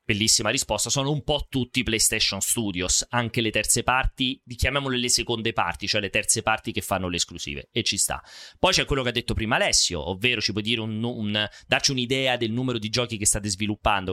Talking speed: 210 wpm